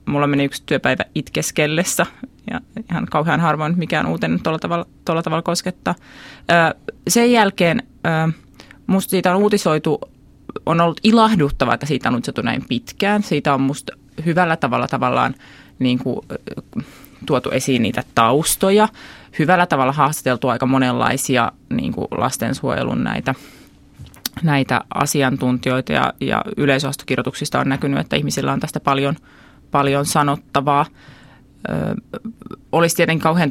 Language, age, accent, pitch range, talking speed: Finnish, 20-39, native, 140-170 Hz, 120 wpm